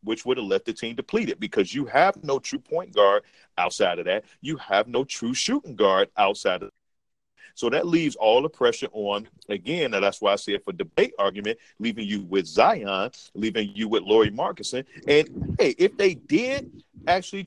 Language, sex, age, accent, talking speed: English, male, 40-59, American, 200 wpm